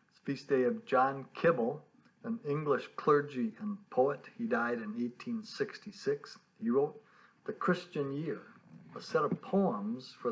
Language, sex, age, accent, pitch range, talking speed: English, male, 60-79, American, 145-225 Hz, 140 wpm